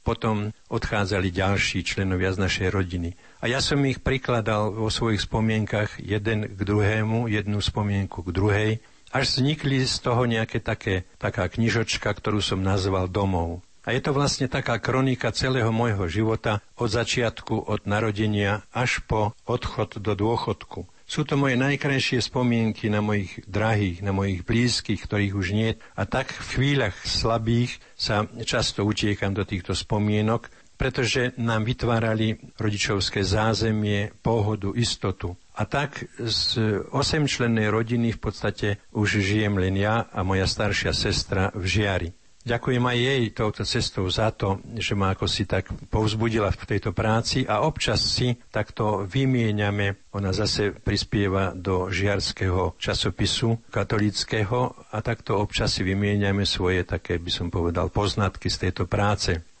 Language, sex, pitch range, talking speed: Slovak, male, 100-120 Hz, 145 wpm